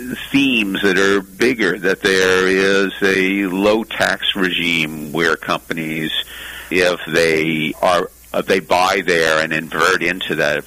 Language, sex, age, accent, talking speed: English, male, 50-69, American, 130 wpm